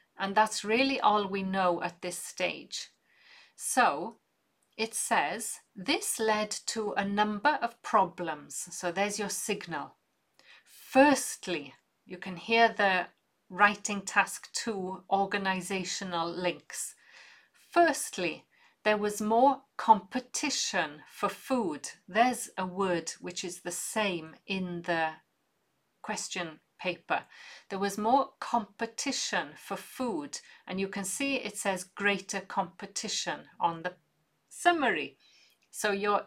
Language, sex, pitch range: English, female, 180-235 Hz